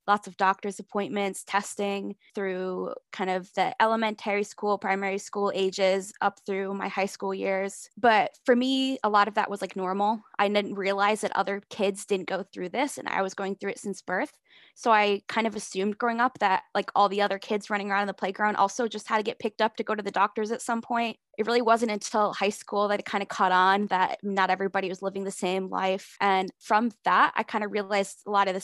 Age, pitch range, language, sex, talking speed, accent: 20-39, 195-225 Hz, English, female, 235 wpm, American